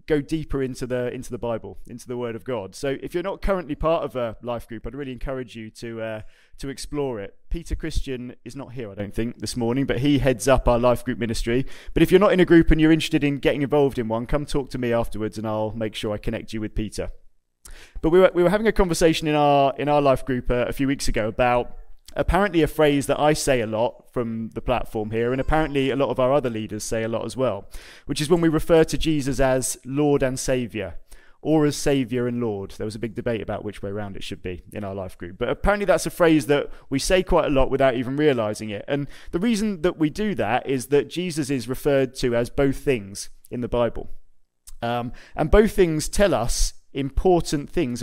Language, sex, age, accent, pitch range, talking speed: English, male, 20-39, British, 115-150 Hz, 245 wpm